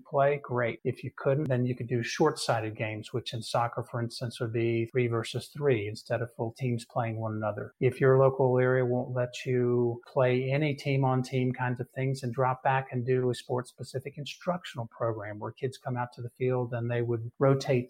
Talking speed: 210 wpm